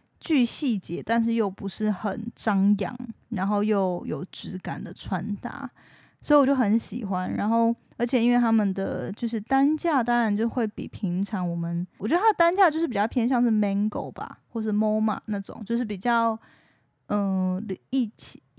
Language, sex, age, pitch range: Chinese, female, 20-39, 190-230 Hz